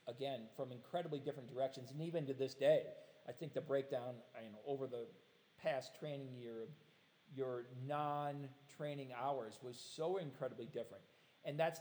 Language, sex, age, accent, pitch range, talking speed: English, male, 40-59, American, 125-145 Hz, 150 wpm